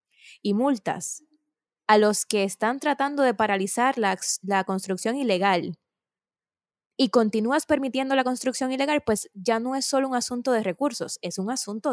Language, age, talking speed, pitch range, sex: Spanish, 20-39, 155 wpm, 195-260 Hz, female